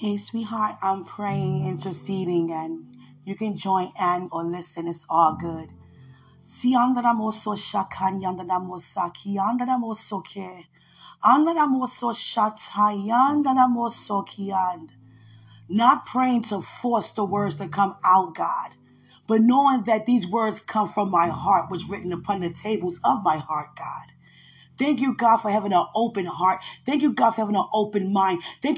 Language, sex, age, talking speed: English, female, 30-49, 125 wpm